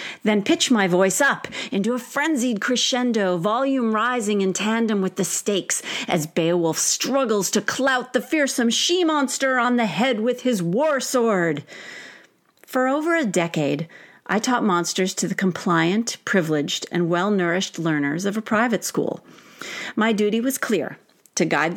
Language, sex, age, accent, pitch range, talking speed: English, female, 40-59, American, 175-240 Hz, 150 wpm